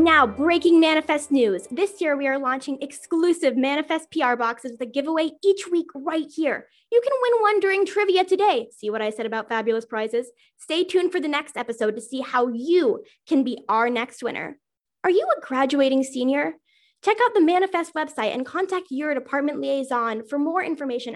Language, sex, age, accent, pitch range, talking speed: English, female, 10-29, American, 245-330 Hz, 190 wpm